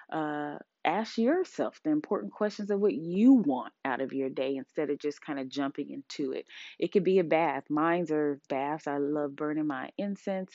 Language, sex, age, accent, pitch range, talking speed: English, female, 20-39, American, 160-220 Hz, 200 wpm